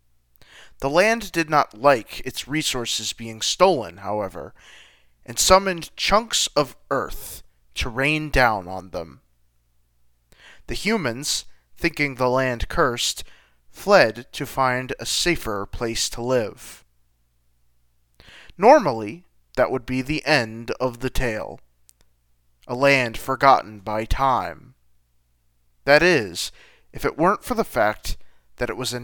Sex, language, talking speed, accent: male, English, 125 wpm, American